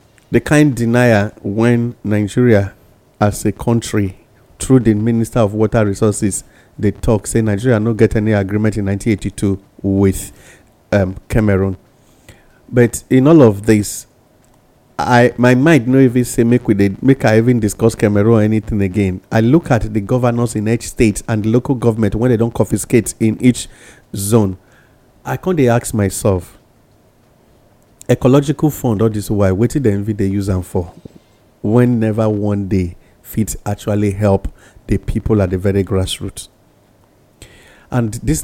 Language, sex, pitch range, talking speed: English, male, 100-120 Hz, 150 wpm